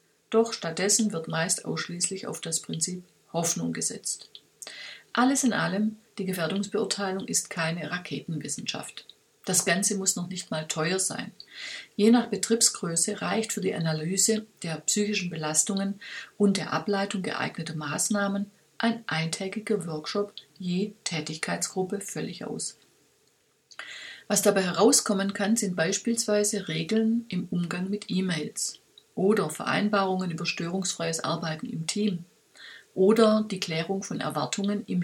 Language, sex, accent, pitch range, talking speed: German, female, German, 170-210 Hz, 125 wpm